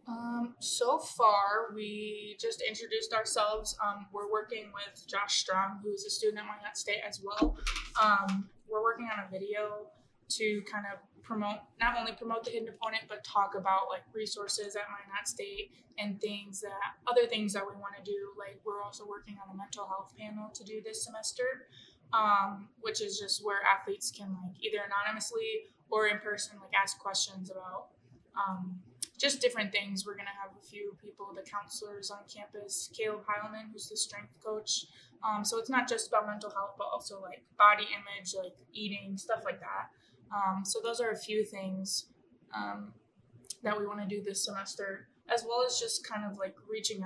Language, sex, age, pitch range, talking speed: English, female, 20-39, 195-220 Hz, 185 wpm